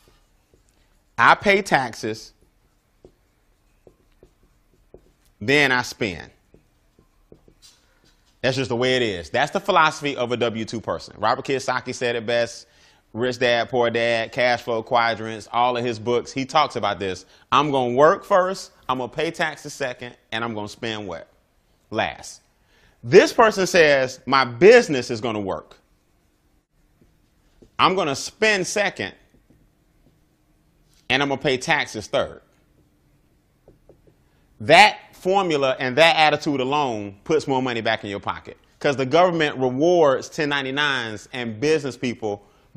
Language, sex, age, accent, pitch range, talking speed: English, male, 30-49, American, 115-150 Hz, 140 wpm